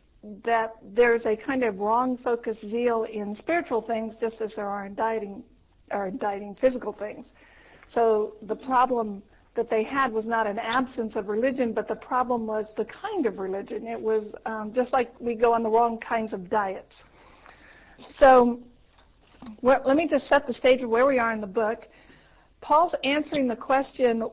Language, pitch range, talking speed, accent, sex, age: English, 220-260 Hz, 175 wpm, American, female, 50-69